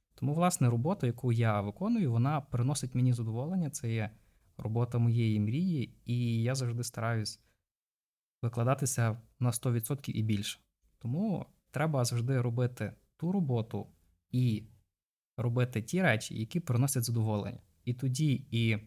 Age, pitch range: 20-39, 115-135 Hz